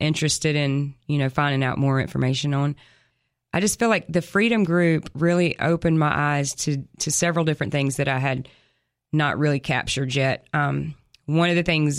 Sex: female